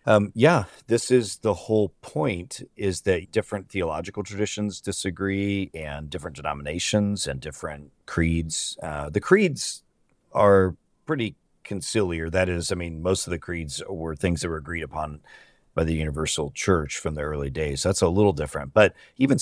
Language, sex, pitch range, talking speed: English, male, 80-100 Hz, 165 wpm